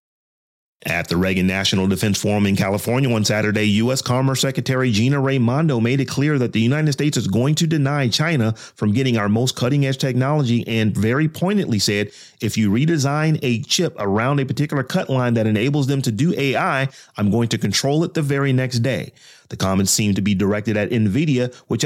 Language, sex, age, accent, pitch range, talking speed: English, male, 30-49, American, 110-140 Hz, 195 wpm